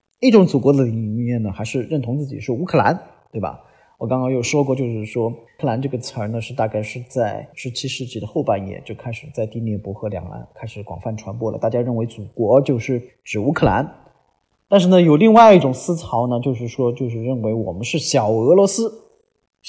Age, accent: 30-49, native